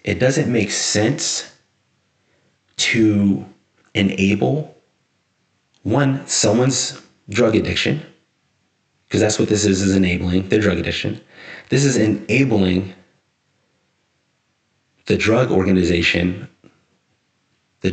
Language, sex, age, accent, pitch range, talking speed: English, male, 30-49, American, 95-115 Hz, 90 wpm